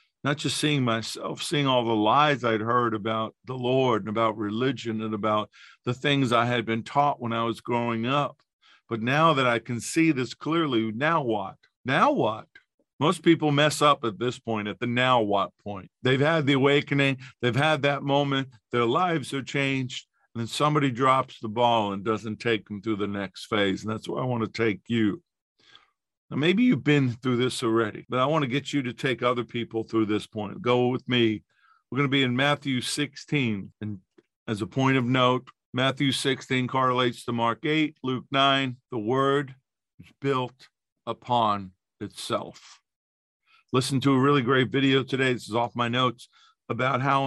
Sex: male